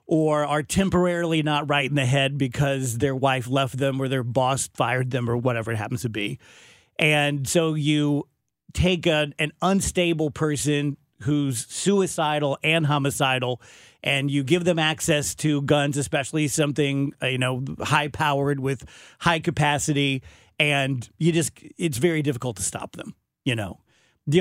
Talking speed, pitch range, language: 155 wpm, 130-155 Hz, English